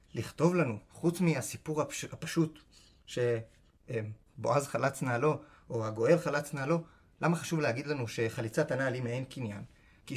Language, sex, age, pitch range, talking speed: Hebrew, male, 30-49, 115-155 Hz, 125 wpm